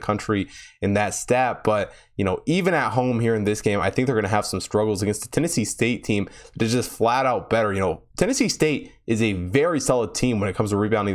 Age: 20-39